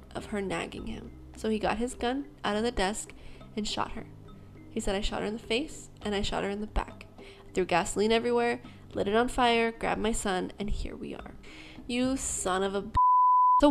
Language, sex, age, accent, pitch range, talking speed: English, female, 10-29, American, 200-255 Hz, 220 wpm